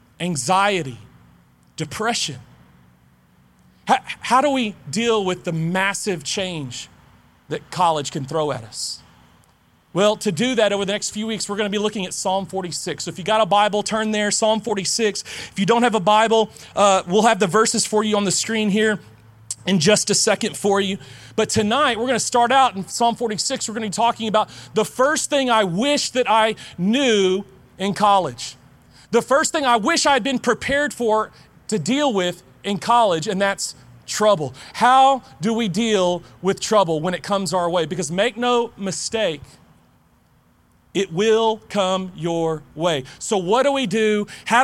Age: 30-49